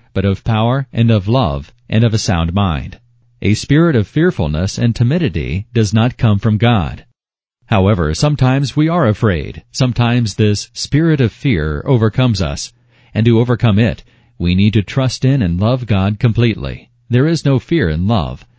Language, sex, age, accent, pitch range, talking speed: English, male, 40-59, American, 105-125 Hz, 170 wpm